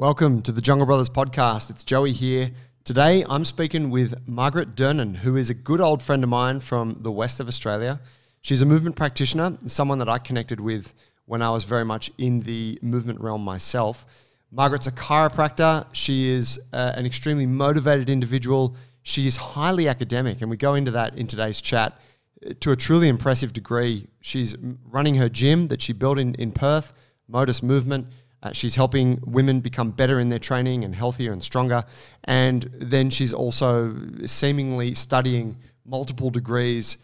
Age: 20-39